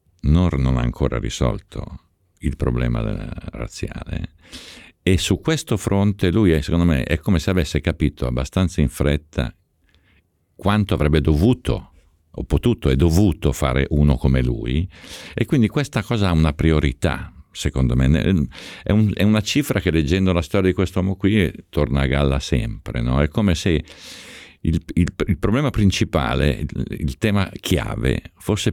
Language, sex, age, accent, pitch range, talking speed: Italian, male, 50-69, native, 70-95 Hz, 145 wpm